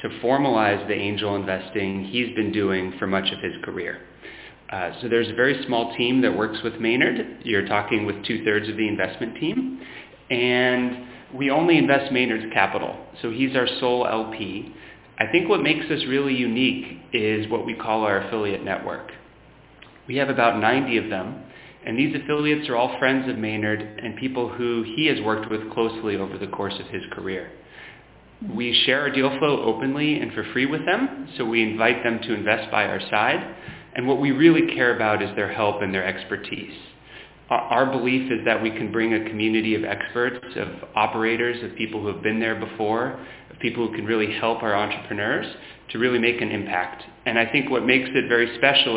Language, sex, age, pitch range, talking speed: English, male, 30-49, 105-125 Hz, 195 wpm